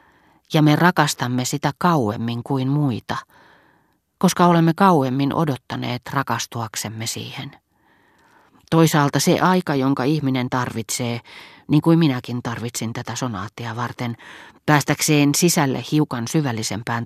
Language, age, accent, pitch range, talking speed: Finnish, 30-49, native, 125-155 Hz, 105 wpm